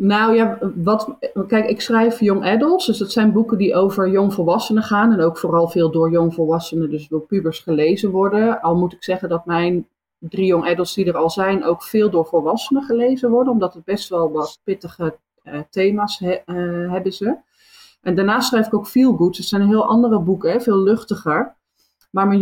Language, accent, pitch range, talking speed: Dutch, Dutch, 165-210 Hz, 200 wpm